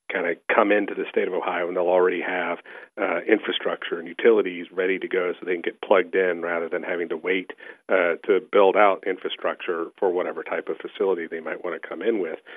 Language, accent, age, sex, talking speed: English, American, 40-59, male, 225 wpm